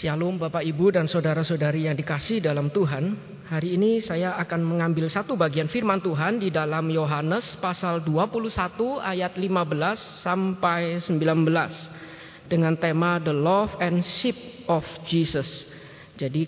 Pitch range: 160-195 Hz